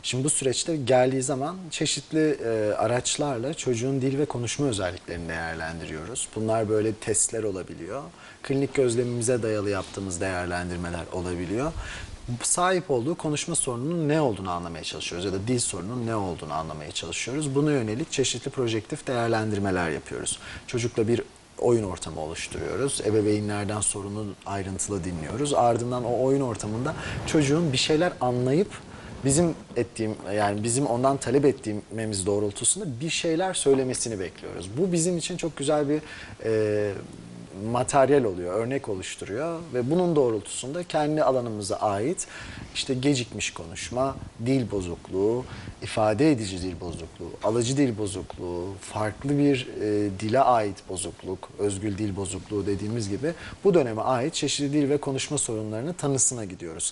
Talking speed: 130 wpm